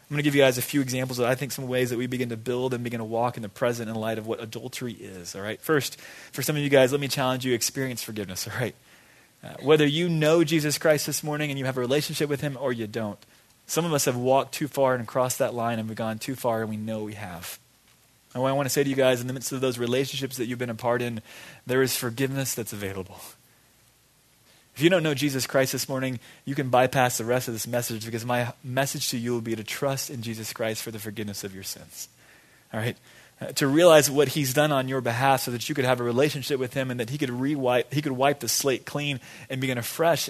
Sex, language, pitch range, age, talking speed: male, English, 115-140 Hz, 20-39, 270 wpm